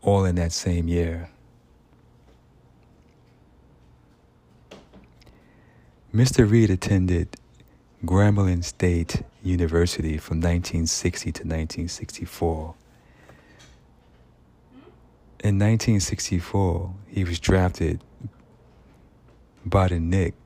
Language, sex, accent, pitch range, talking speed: English, male, American, 80-95 Hz, 50 wpm